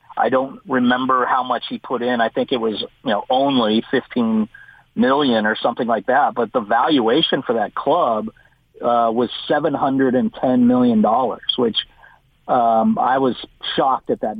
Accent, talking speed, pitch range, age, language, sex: American, 175 wpm, 115-135 Hz, 50-69, English, male